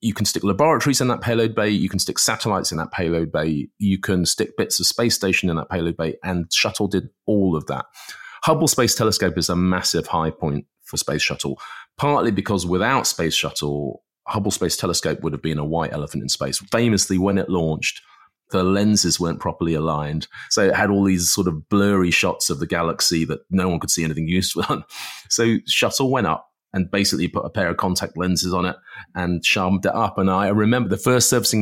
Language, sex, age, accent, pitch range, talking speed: English, male, 30-49, British, 90-105 Hz, 215 wpm